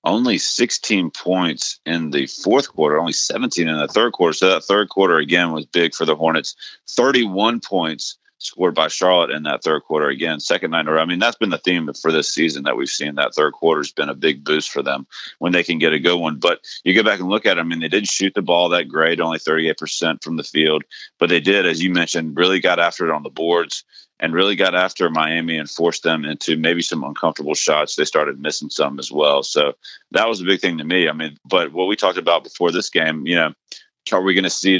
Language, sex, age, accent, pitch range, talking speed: English, male, 30-49, American, 80-95 Hz, 250 wpm